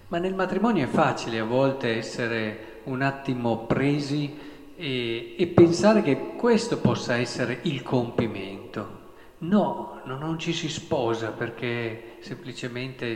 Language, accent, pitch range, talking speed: Italian, native, 115-155 Hz, 130 wpm